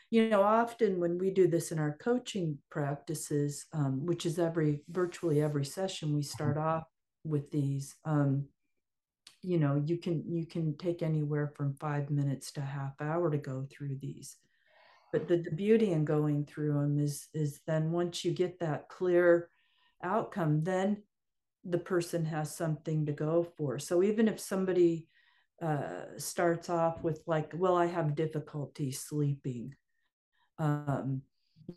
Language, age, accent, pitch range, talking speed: English, 50-69, American, 145-170 Hz, 155 wpm